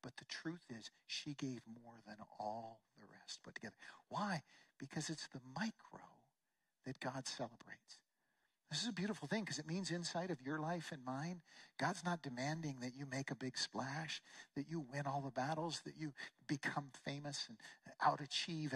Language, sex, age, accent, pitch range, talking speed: English, male, 50-69, American, 125-160 Hz, 180 wpm